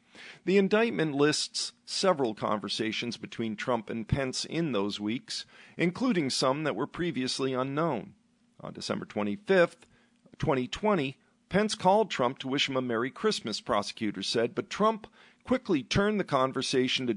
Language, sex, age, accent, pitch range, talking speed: English, male, 50-69, American, 120-200 Hz, 140 wpm